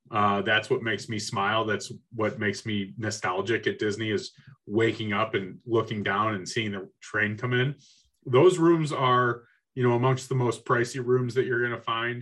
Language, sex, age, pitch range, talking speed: English, male, 30-49, 110-145 Hz, 195 wpm